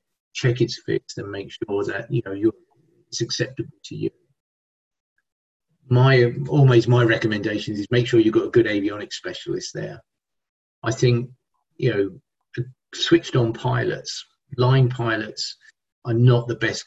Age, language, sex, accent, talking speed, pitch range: 40-59, English, male, British, 145 wpm, 110-130 Hz